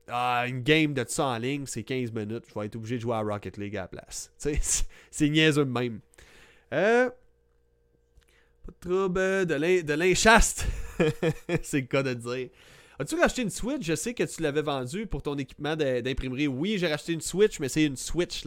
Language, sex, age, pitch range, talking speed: French, male, 30-49, 115-160 Hz, 210 wpm